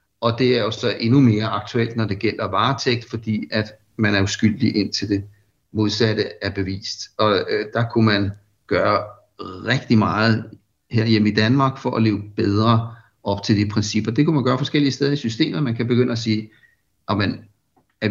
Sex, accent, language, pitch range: male, native, Danish, 105-120 Hz